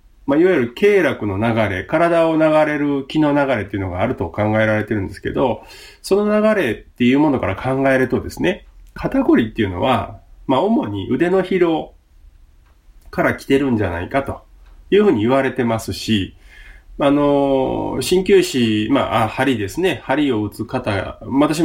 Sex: male